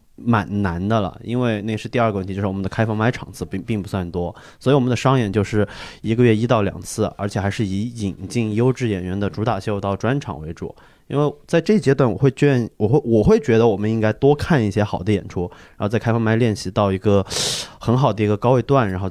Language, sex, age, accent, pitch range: Chinese, male, 20-39, native, 95-120 Hz